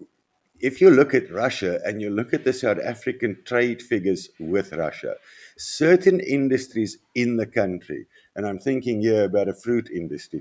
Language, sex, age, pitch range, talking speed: English, male, 50-69, 100-160 Hz, 165 wpm